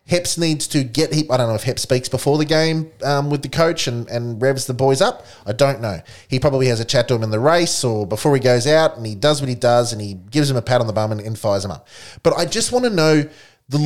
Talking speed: 295 wpm